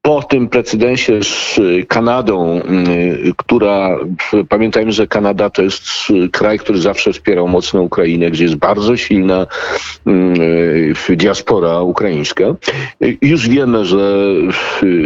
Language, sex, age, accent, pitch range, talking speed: Polish, male, 50-69, native, 80-120 Hz, 105 wpm